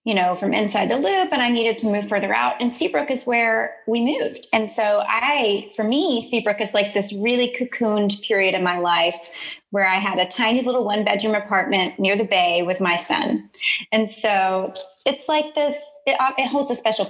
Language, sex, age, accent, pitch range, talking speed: English, female, 30-49, American, 190-240 Hz, 205 wpm